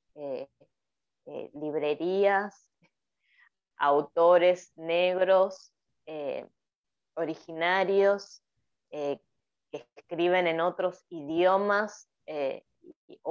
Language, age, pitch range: English, 20-39, 165-220 Hz